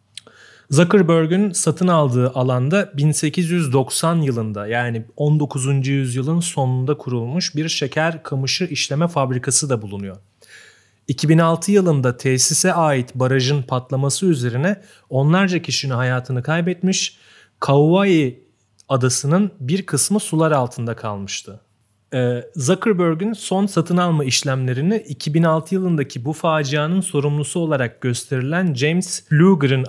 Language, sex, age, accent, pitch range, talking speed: Turkish, male, 30-49, native, 125-170 Hz, 100 wpm